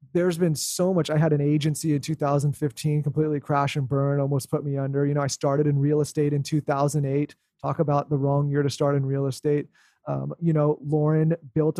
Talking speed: 215 wpm